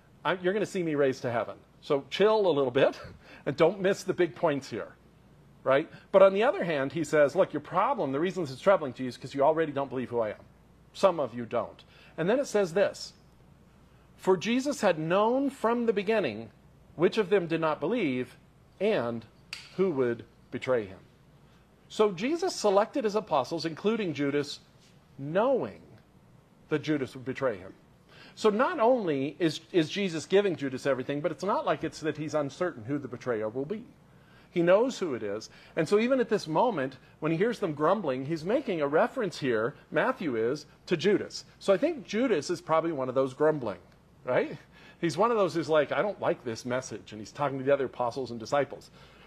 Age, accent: 50-69, American